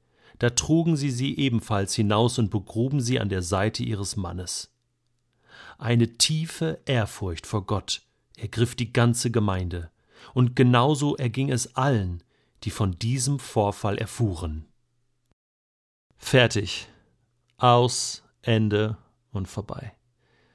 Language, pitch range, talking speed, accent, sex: German, 100-130 Hz, 110 wpm, German, male